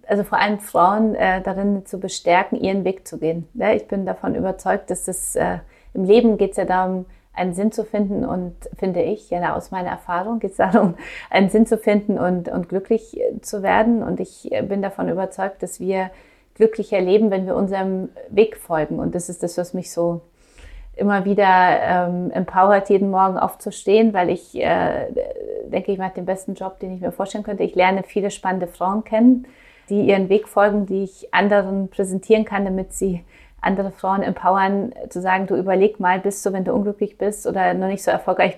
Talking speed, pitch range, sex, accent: 195 wpm, 185-205 Hz, female, German